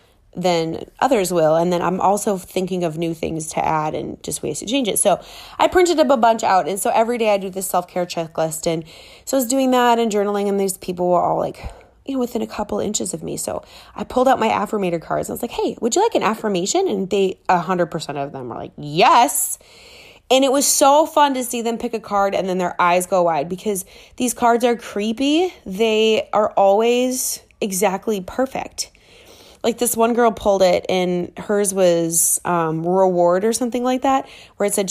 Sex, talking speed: female, 220 wpm